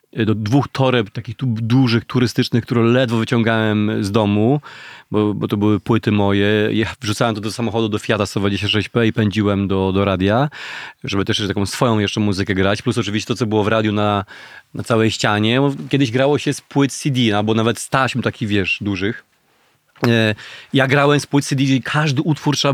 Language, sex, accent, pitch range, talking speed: Polish, male, native, 115-135 Hz, 195 wpm